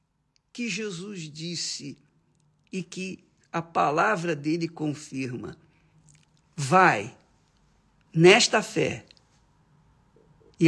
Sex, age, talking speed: male, 50-69, 75 wpm